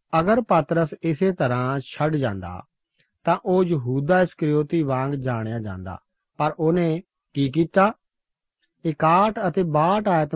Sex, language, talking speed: male, Punjabi, 120 wpm